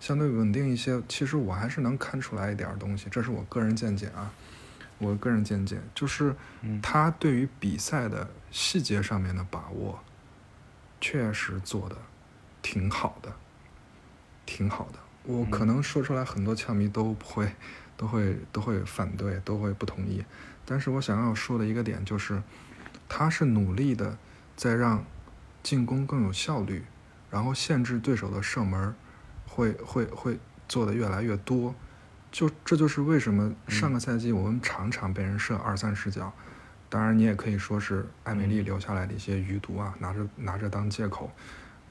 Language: Chinese